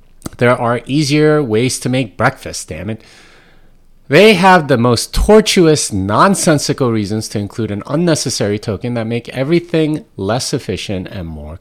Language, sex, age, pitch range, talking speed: English, male, 30-49, 95-145 Hz, 145 wpm